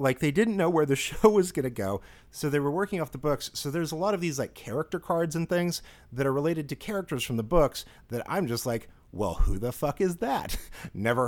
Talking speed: 255 wpm